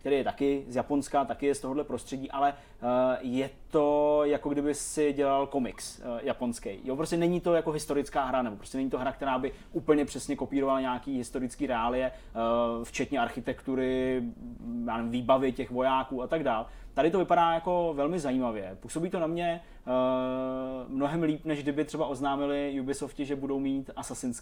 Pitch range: 125-140 Hz